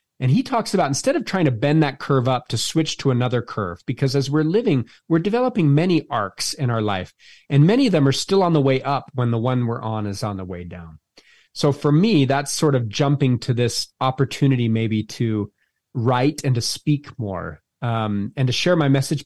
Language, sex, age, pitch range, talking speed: English, male, 30-49, 115-150 Hz, 220 wpm